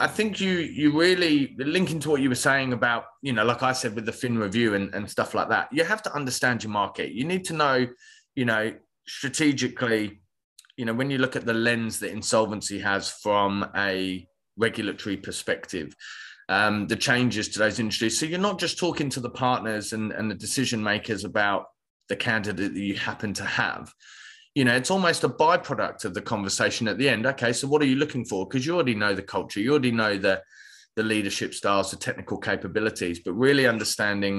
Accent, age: British, 20-39